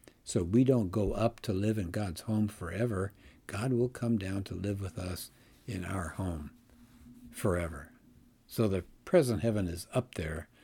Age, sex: 60-79, male